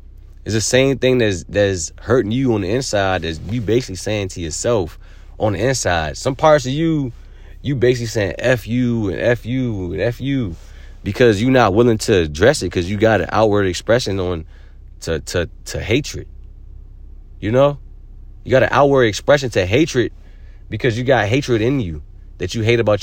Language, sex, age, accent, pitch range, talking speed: English, male, 30-49, American, 85-120 Hz, 190 wpm